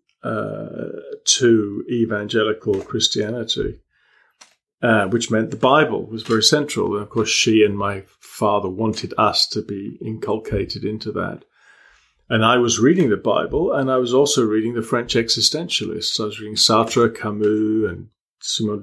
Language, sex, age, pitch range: English, male, 40-59, 110-130 Hz